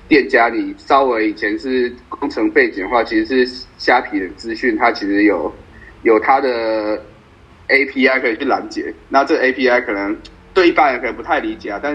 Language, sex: Chinese, male